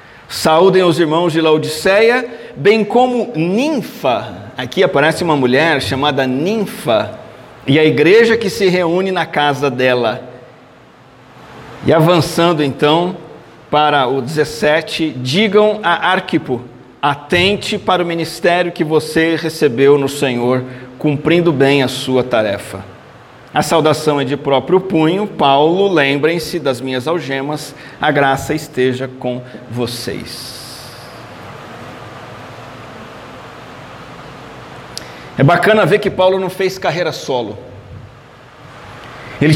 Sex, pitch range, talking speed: male, 130-175 Hz, 110 wpm